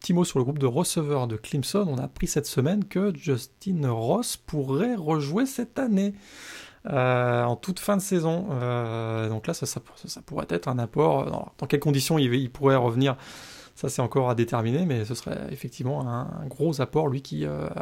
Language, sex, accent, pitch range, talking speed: French, male, French, 125-155 Hz, 200 wpm